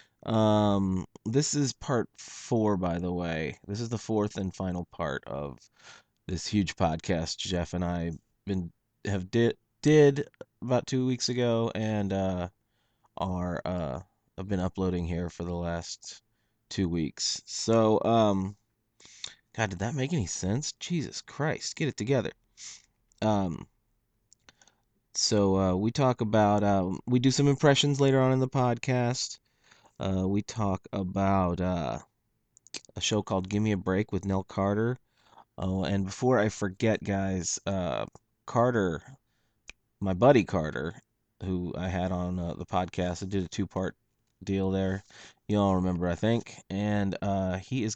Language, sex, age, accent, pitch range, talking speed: English, male, 30-49, American, 95-115 Hz, 150 wpm